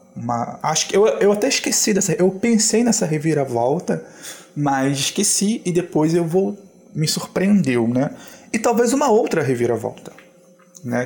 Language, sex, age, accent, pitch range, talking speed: Portuguese, male, 20-39, Brazilian, 135-195 Hz, 130 wpm